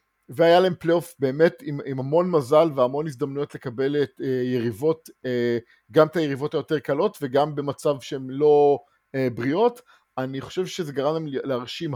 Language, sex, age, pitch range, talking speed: English, male, 50-69, 125-150 Hz, 135 wpm